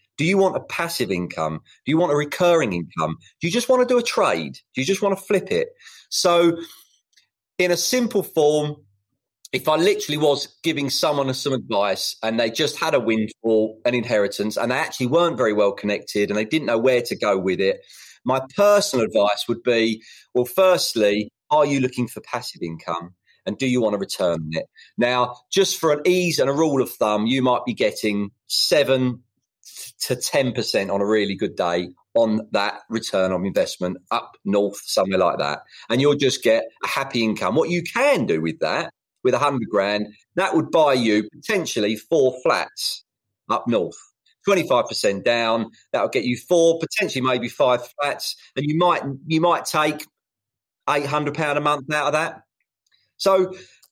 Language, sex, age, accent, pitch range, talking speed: English, male, 30-49, British, 110-170 Hz, 185 wpm